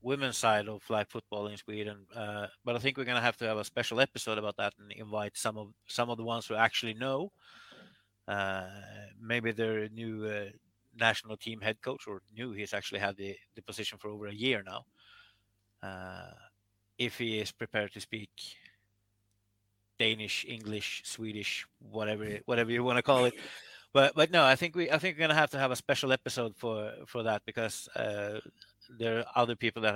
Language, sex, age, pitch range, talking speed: English, male, 30-49, 105-120 Hz, 190 wpm